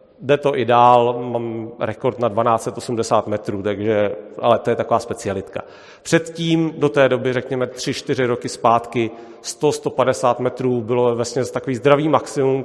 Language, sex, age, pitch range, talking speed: Czech, male, 40-59, 120-140 Hz, 140 wpm